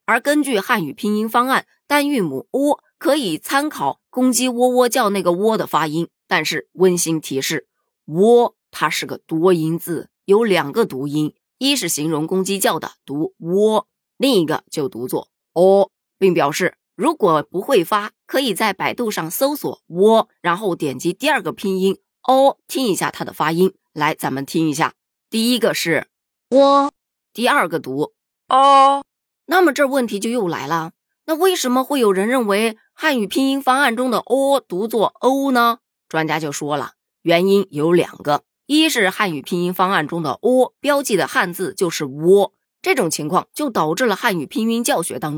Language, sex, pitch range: Chinese, female, 165-260 Hz